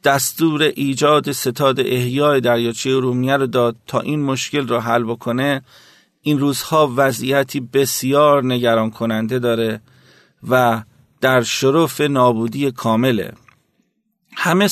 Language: Persian